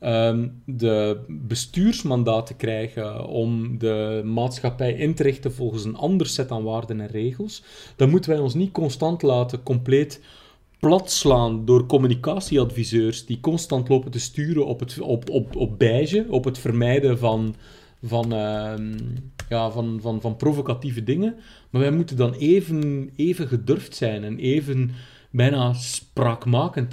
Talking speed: 145 wpm